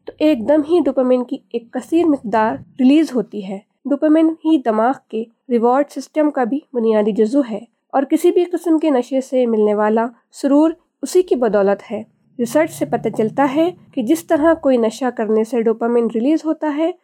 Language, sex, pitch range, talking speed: Urdu, female, 220-295 Hz, 185 wpm